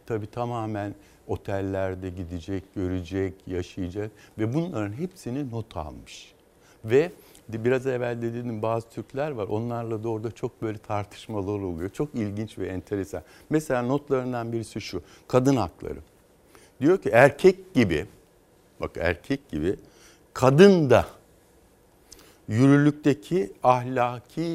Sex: male